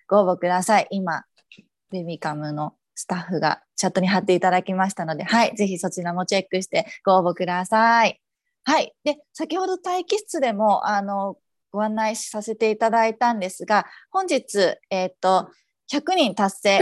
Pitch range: 190-255 Hz